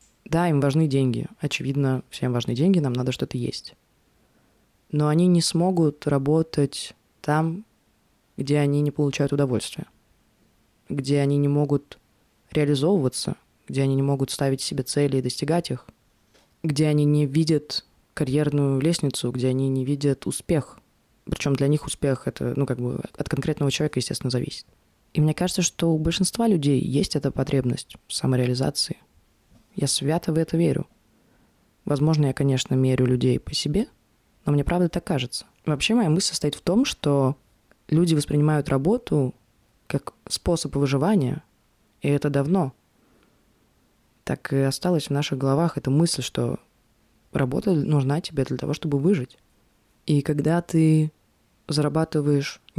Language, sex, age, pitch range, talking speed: Russian, female, 20-39, 135-160 Hz, 145 wpm